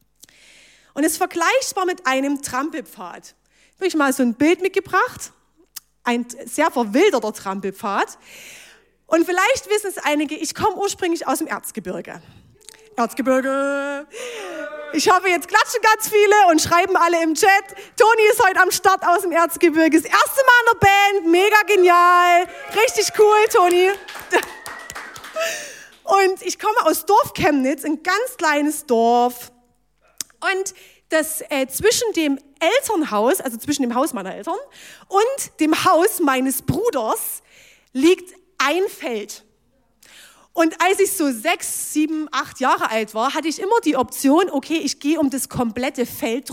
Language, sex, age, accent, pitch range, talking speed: German, female, 30-49, German, 275-375 Hz, 145 wpm